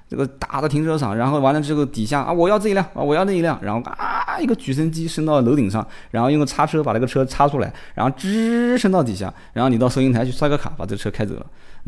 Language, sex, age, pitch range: Chinese, male, 20-39, 110-180 Hz